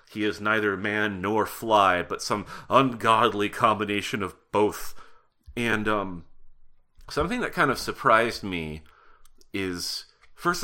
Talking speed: 125 wpm